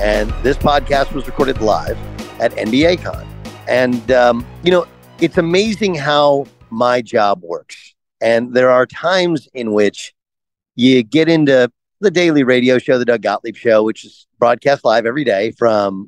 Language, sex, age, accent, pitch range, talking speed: English, male, 40-59, American, 110-145 Hz, 160 wpm